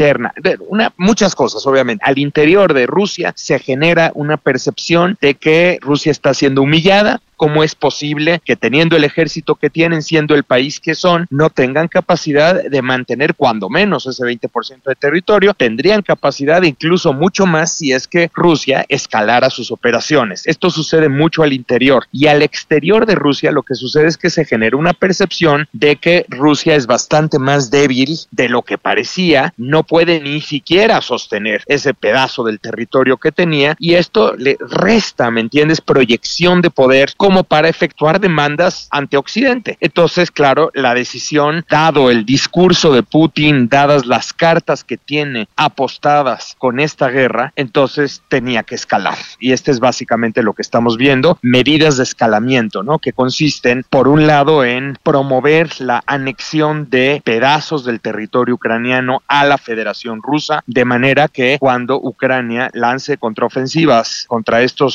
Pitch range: 130-160 Hz